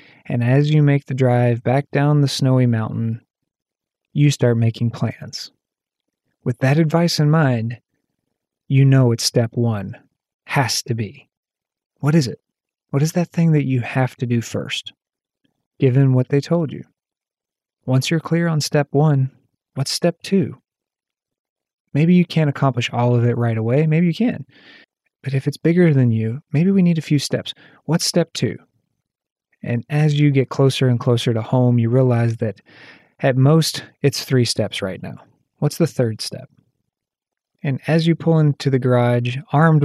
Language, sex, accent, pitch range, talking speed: English, male, American, 120-150 Hz, 170 wpm